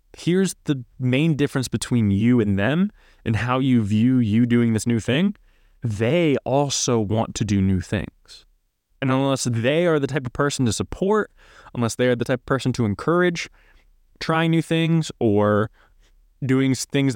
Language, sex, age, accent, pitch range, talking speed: English, male, 20-39, American, 110-140 Hz, 170 wpm